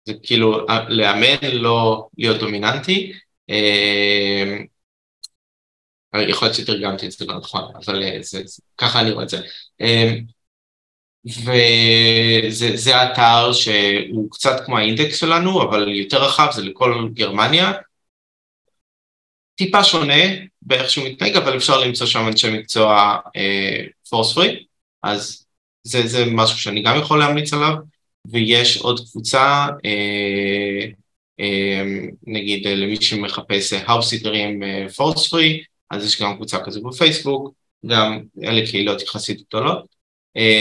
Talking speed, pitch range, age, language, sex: 115 wpm, 105-130 Hz, 20-39, Hebrew, male